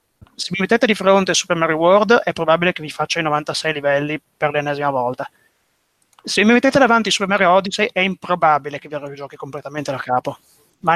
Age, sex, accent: 30-49, male, native